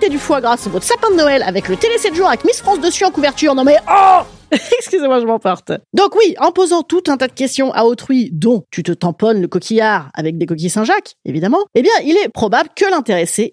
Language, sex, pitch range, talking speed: French, female, 210-310 Hz, 240 wpm